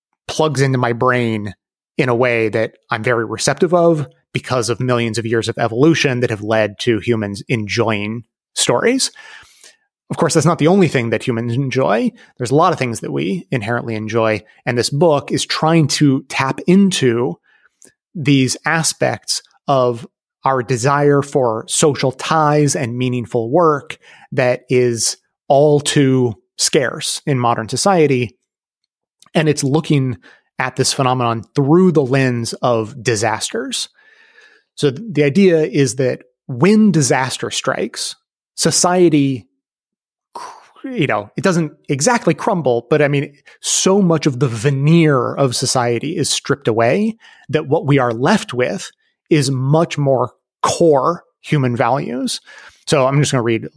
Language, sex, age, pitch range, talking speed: English, male, 30-49, 120-160 Hz, 145 wpm